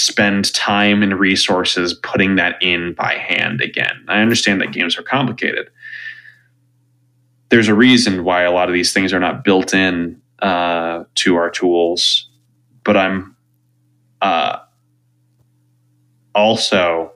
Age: 20-39